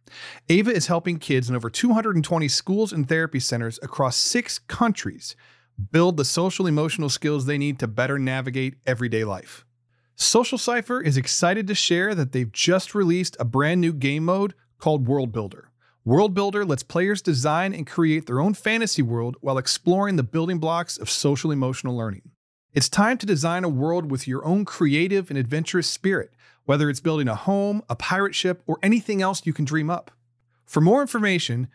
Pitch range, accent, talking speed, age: 130-190 Hz, American, 180 wpm, 40-59